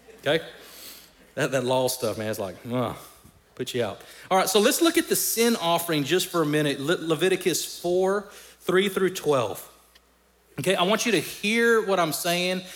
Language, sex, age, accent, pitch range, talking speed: English, male, 30-49, American, 135-190 Hz, 190 wpm